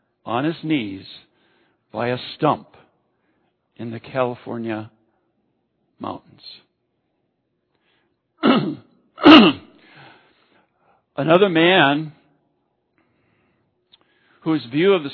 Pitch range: 135-170 Hz